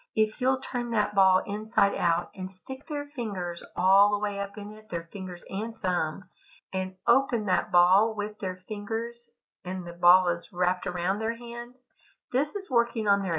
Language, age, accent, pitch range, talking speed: English, 50-69, American, 175-215 Hz, 185 wpm